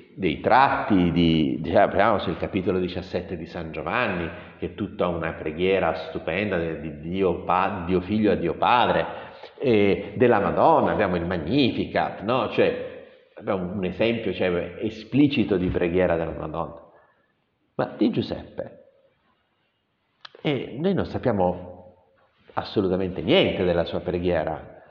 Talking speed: 130 wpm